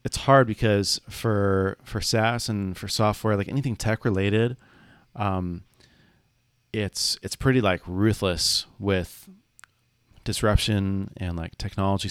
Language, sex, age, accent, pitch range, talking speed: English, male, 30-49, American, 90-110 Hz, 120 wpm